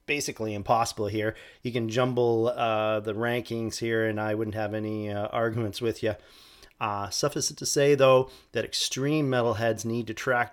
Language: English